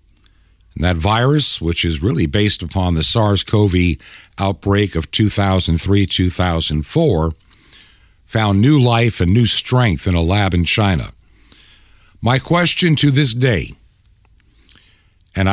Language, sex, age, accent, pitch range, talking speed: English, male, 60-79, American, 85-105 Hz, 115 wpm